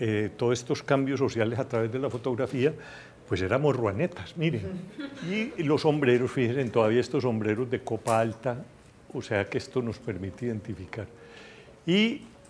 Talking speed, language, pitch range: 155 wpm, Spanish, 115-150 Hz